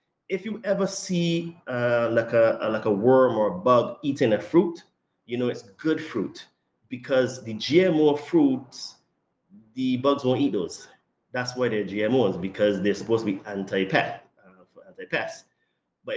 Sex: male